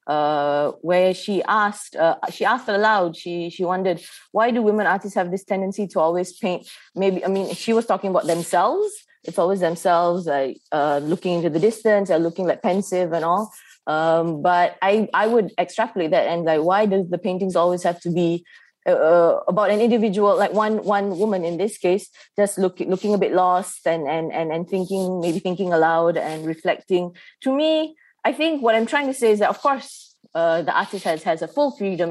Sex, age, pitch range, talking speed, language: female, 20-39, 175-220 Hz, 205 wpm, English